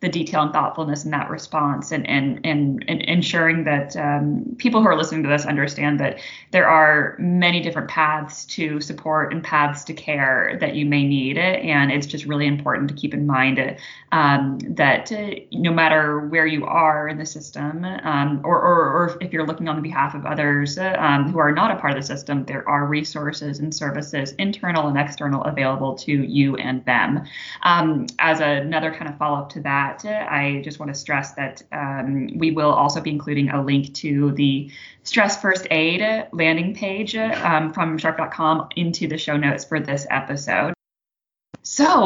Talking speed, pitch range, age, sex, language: 190 wpm, 145-170 Hz, 20-39, female, English